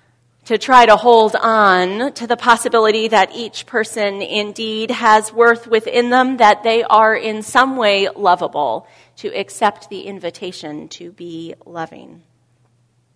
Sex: female